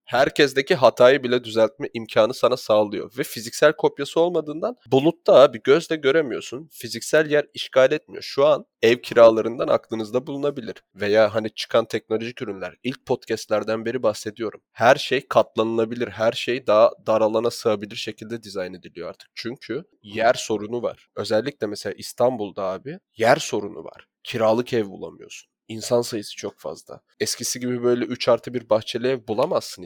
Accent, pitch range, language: native, 115-155 Hz, Turkish